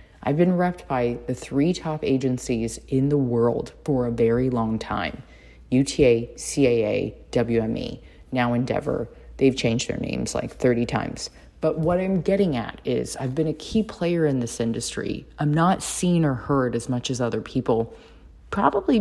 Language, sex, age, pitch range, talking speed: English, female, 30-49, 115-150 Hz, 165 wpm